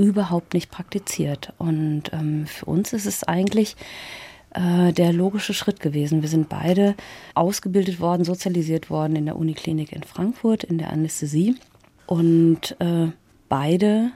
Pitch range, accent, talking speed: 170-200 Hz, German, 140 wpm